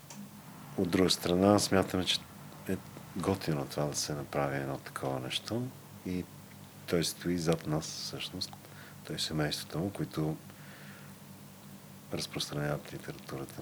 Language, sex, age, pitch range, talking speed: Bulgarian, male, 40-59, 70-85 Hz, 120 wpm